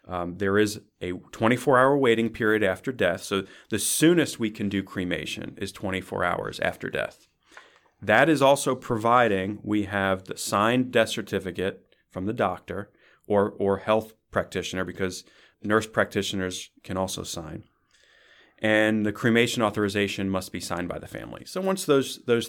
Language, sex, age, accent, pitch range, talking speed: English, male, 30-49, American, 100-115 Hz, 155 wpm